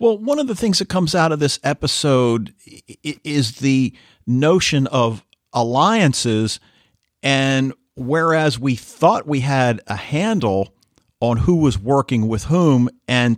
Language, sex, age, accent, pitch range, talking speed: English, male, 50-69, American, 110-140 Hz, 140 wpm